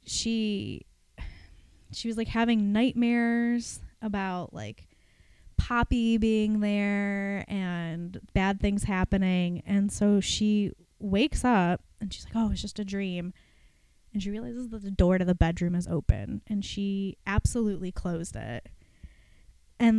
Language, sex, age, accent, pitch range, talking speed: English, female, 20-39, American, 180-230 Hz, 135 wpm